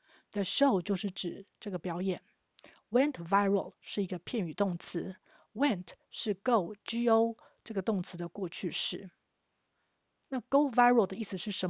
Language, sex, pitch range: Chinese, female, 185-225 Hz